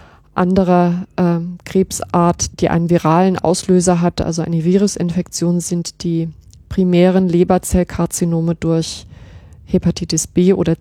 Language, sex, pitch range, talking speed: German, female, 175-200 Hz, 100 wpm